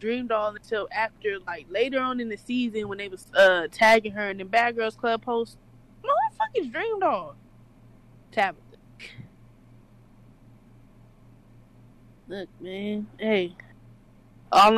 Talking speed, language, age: 125 wpm, English, 20-39